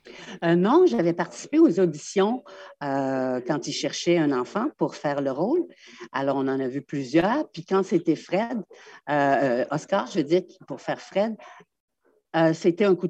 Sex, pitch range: female, 150-195 Hz